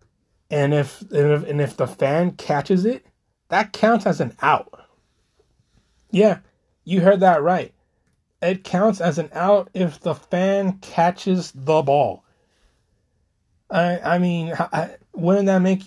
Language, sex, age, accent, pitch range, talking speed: English, male, 30-49, American, 130-175 Hz, 135 wpm